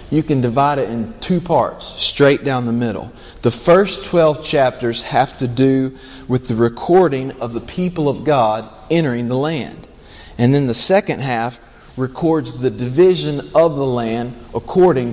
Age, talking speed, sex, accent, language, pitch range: 40-59, 165 wpm, male, American, English, 115-145 Hz